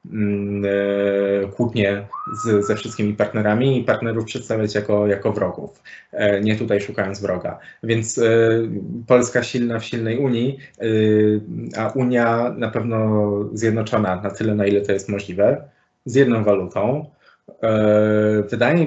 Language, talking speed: Polish, 115 wpm